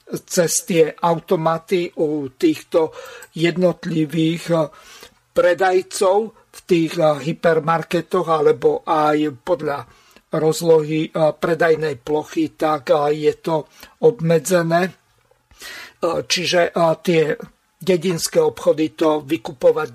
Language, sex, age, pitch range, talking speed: Slovak, male, 50-69, 165-200 Hz, 80 wpm